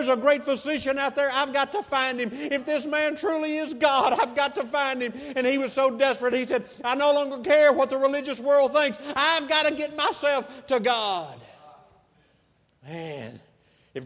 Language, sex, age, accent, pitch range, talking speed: English, male, 50-69, American, 160-270 Hz, 200 wpm